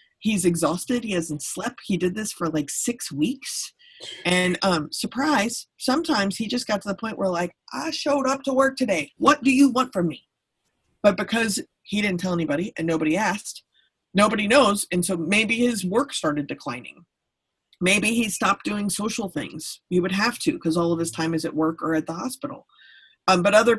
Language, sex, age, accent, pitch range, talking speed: English, female, 30-49, American, 160-220 Hz, 200 wpm